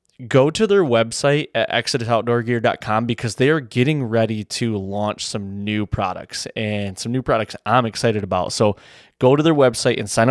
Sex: male